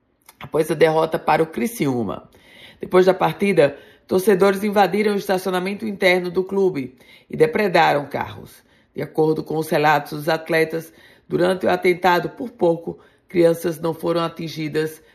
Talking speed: 140 wpm